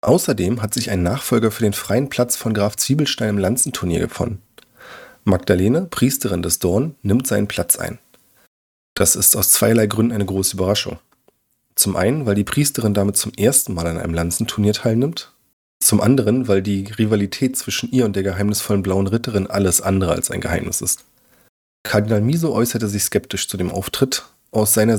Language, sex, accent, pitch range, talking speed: German, male, German, 95-125 Hz, 175 wpm